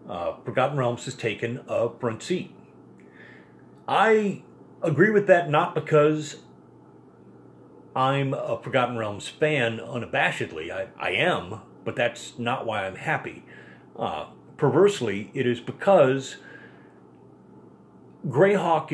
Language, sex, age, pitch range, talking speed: English, male, 40-59, 105-150 Hz, 110 wpm